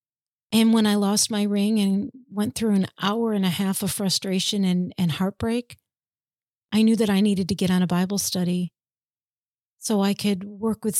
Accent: American